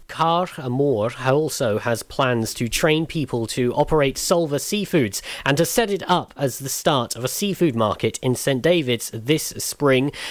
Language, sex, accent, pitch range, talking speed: English, male, British, 120-150 Hz, 170 wpm